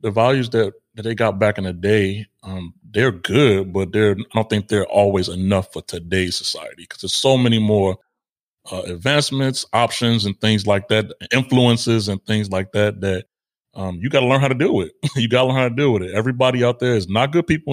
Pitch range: 100-120 Hz